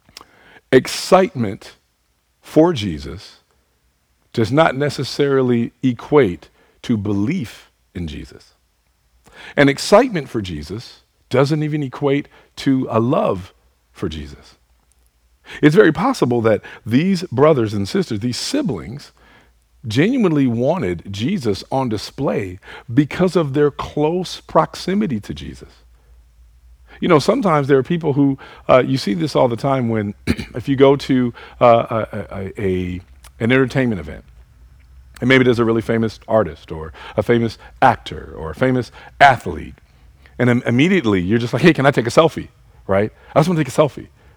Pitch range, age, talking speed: 85-145 Hz, 50-69, 140 wpm